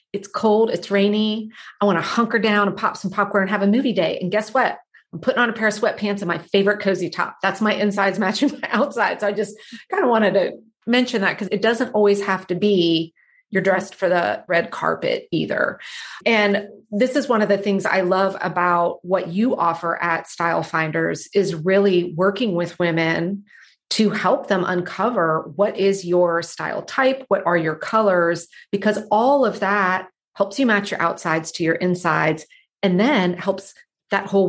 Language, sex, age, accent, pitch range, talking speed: English, female, 30-49, American, 180-215 Hz, 195 wpm